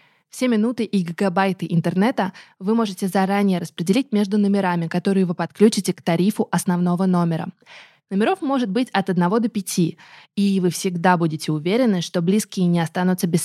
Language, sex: Russian, female